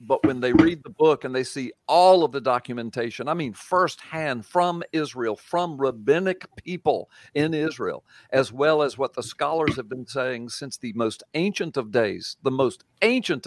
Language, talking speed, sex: English, 185 wpm, male